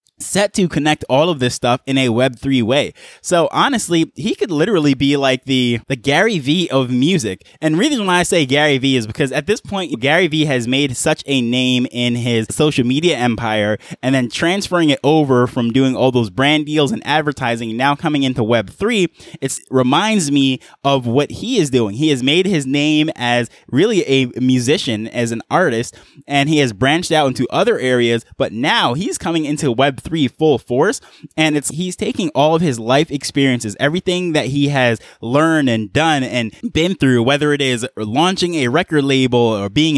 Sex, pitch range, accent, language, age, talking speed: male, 125-160 Hz, American, English, 20-39, 200 wpm